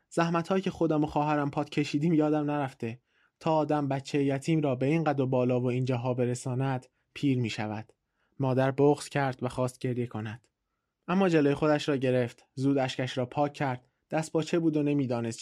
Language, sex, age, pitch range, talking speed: Persian, male, 20-39, 125-155 Hz, 190 wpm